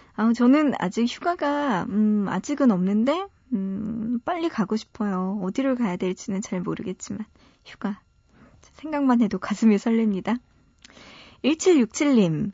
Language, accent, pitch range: Korean, native, 185-265 Hz